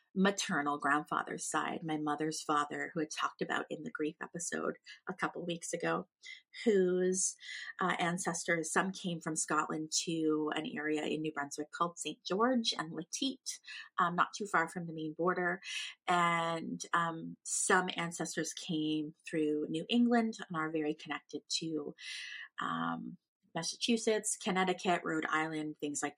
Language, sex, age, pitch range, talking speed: English, female, 30-49, 155-205 Hz, 145 wpm